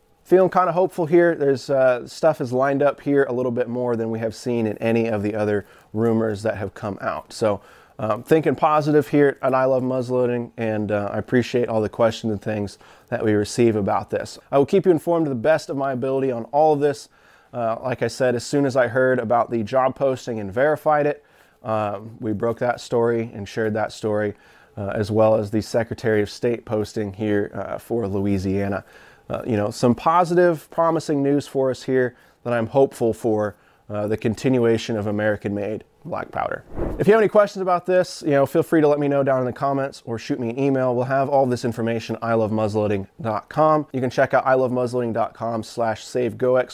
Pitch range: 110-135 Hz